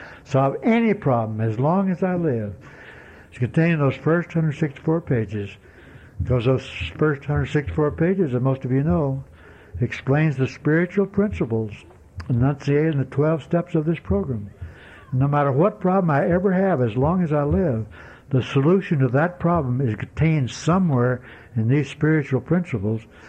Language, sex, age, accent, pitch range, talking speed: English, male, 60-79, American, 125-170 Hz, 155 wpm